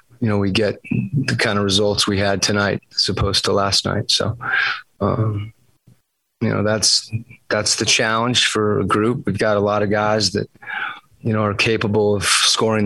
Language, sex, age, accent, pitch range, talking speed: English, male, 30-49, American, 100-110 Hz, 185 wpm